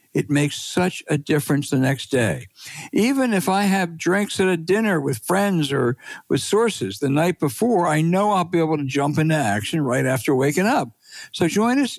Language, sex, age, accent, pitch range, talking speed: English, male, 60-79, American, 140-185 Hz, 200 wpm